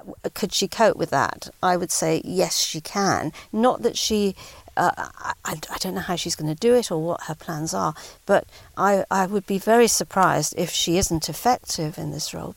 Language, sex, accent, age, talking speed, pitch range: English, female, British, 50-69, 210 wpm, 180-235 Hz